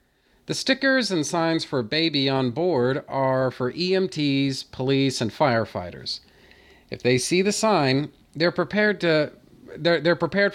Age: 40-59